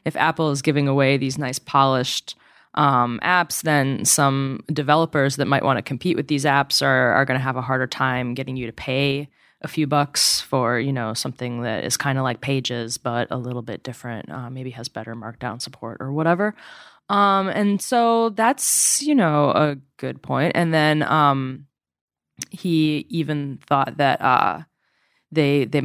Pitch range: 130-165 Hz